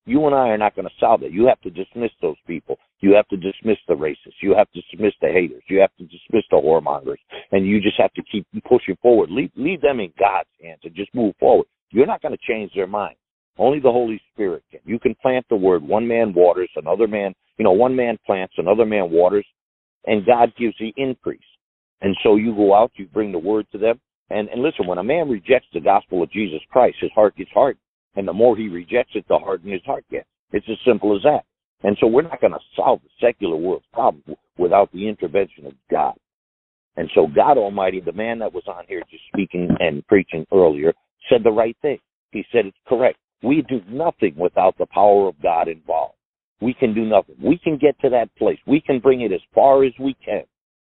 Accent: American